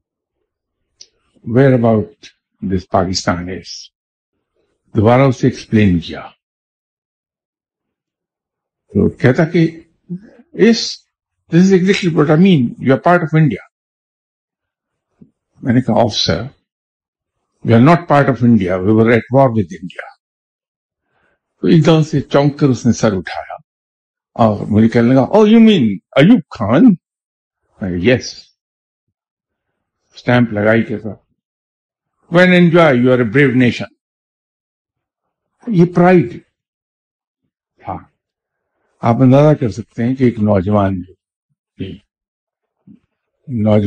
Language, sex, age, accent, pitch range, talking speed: English, male, 60-79, Indian, 100-160 Hz, 80 wpm